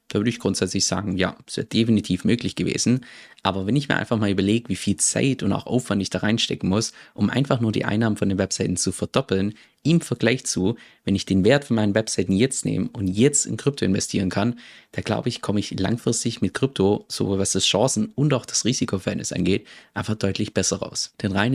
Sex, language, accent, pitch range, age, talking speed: male, German, German, 95-115 Hz, 20-39, 220 wpm